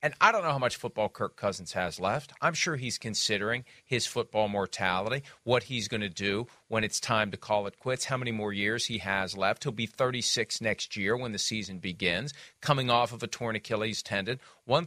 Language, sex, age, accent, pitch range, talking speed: English, male, 40-59, American, 120-170 Hz, 220 wpm